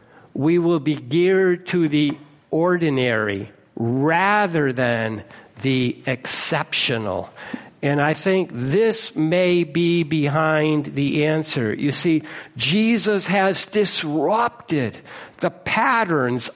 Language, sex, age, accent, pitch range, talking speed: English, male, 60-79, American, 150-195 Hz, 100 wpm